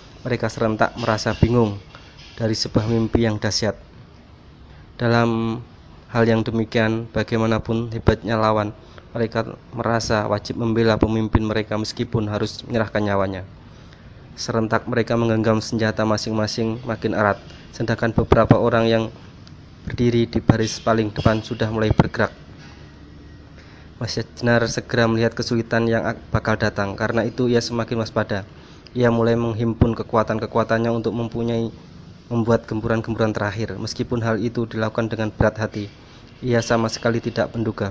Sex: male